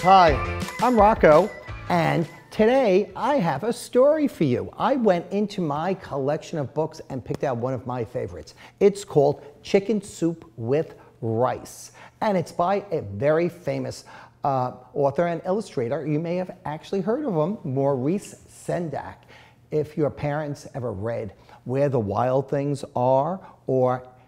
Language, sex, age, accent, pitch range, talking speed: English, male, 50-69, American, 130-190 Hz, 150 wpm